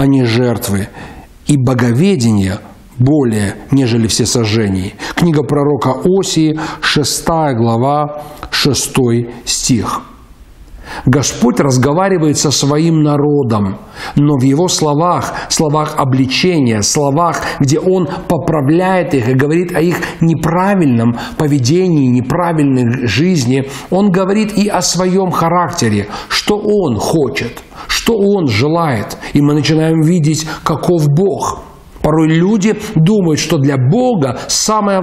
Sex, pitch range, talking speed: male, 130-170 Hz, 110 wpm